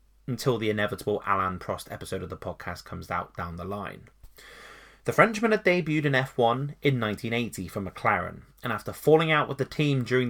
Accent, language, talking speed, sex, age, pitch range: British, English, 185 wpm, male, 20-39, 100-150 Hz